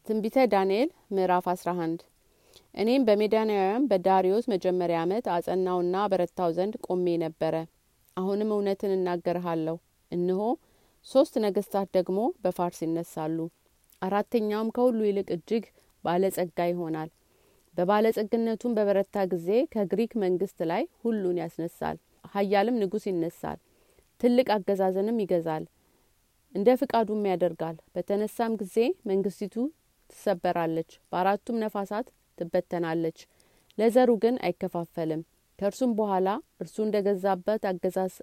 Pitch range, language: 175-215 Hz, Amharic